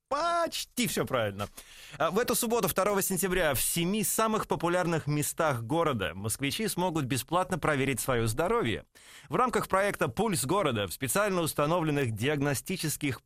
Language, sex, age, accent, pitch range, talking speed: Russian, male, 30-49, native, 135-185 Hz, 130 wpm